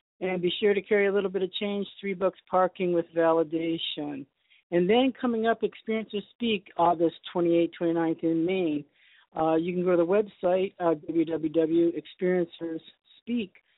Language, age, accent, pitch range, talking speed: English, 50-69, American, 165-190 Hz, 150 wpm